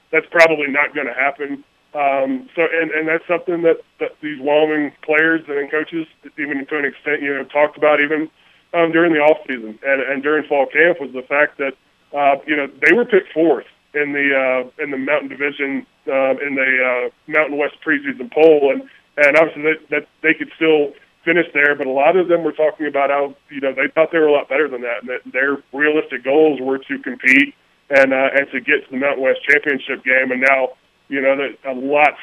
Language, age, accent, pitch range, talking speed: English, 20-39, American, 135-150 Hz, 220 wpm